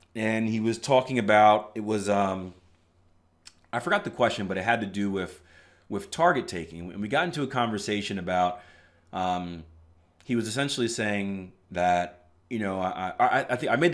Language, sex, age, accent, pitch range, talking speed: English, male, 30-49, American, 85-125 Hz, 180 wpm